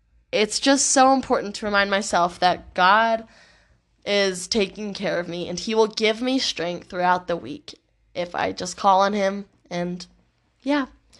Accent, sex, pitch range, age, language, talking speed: American, female, 185-240 Hz, 20-39, English, 165 wpm